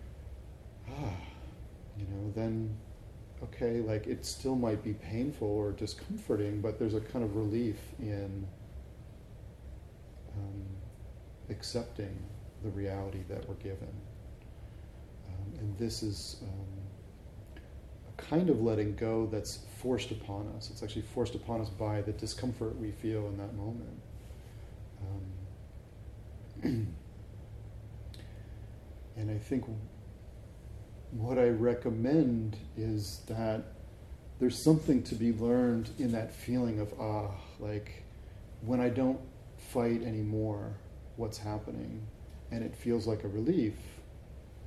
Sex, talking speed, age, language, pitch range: male, 115 wpm, 40-59, English, 100-115 Hz